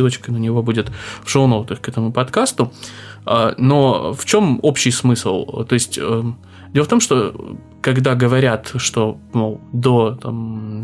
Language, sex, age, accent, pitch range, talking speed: Russian, male, 20-39, native, 115-135 Hz, 135 wpm